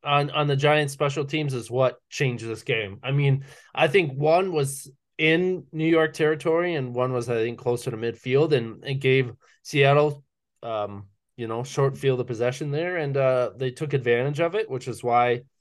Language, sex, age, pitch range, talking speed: English, male, 20-39, 115-145 Hz, 195 wpm